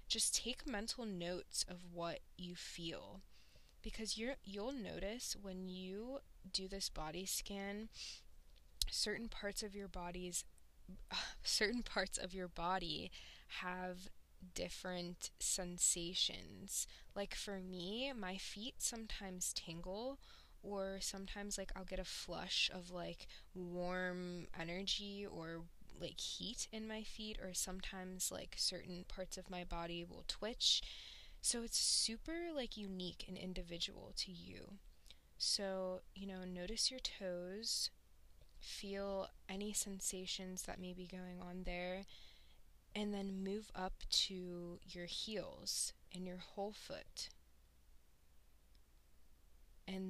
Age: 20-39